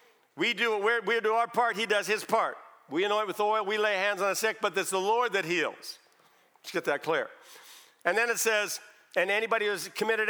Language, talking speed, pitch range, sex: English, 215 wpm, 205-235 Hz, male